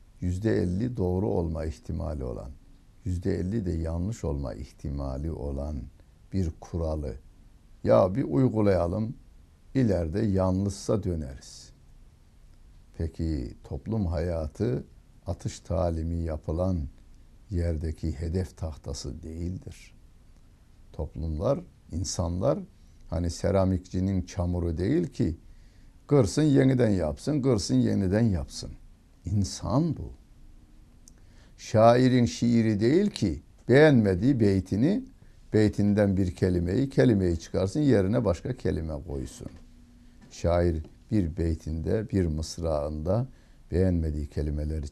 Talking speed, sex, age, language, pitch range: 90 wpm, male, 60-79, Turkish, 80-105 Hz